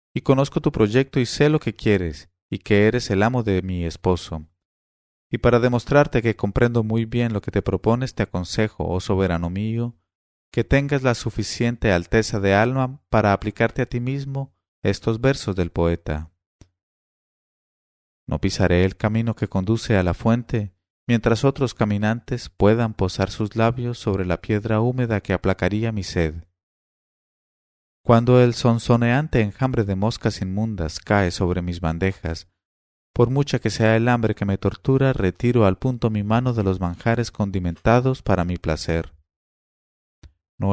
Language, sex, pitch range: English, male, 90-115 Hz